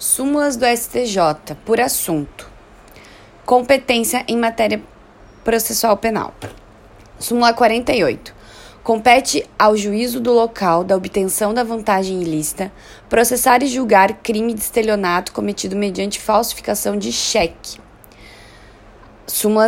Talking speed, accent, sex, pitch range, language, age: 105 wpm, Brazilian, female, 190-235 Hz, Portuguese, 20-39